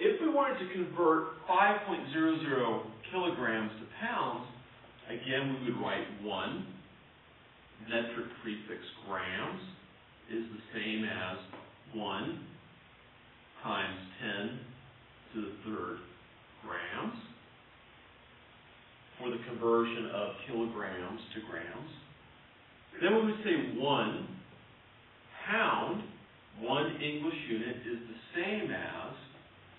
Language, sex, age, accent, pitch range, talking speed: English, male, 40-59, American, 110-135 Hz, 95 wpm